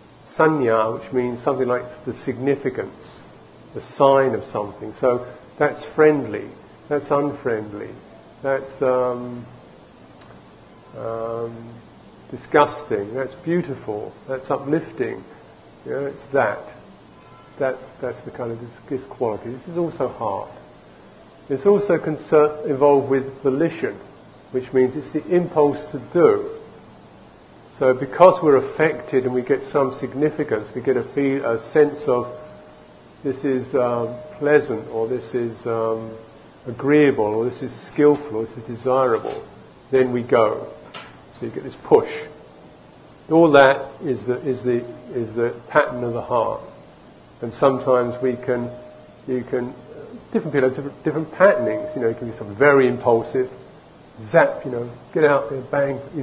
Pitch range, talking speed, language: 120-145 Hz, 140 wpm, English